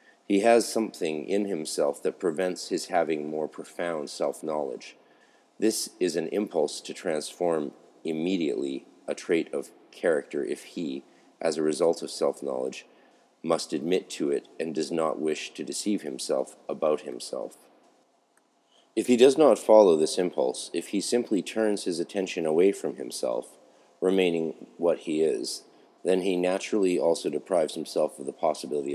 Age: 40-59